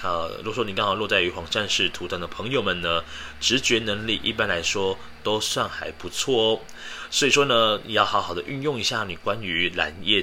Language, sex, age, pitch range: Chinese, male, 30-49, 95-140 Hz